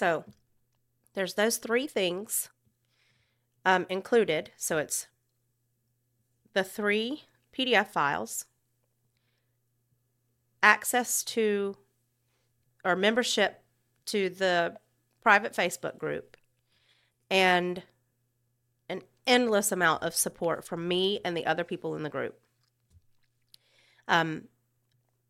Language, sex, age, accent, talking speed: English, female, 30-49, American, 90 wpm